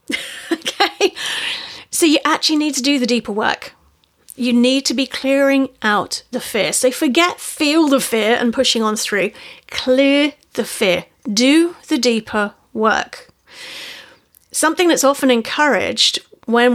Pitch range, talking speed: 230-285 Hz, 140 wpm